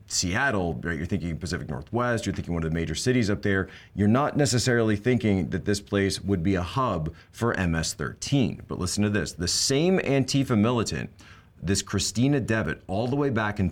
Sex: male